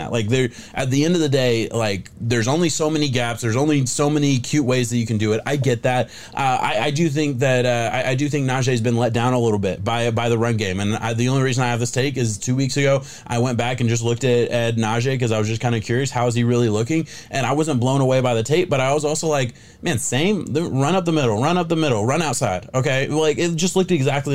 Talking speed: 285 wpm